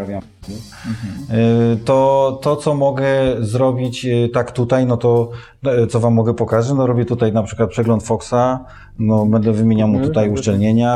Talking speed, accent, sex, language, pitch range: 140 wpm, native, male, Polish, 95-120 Hz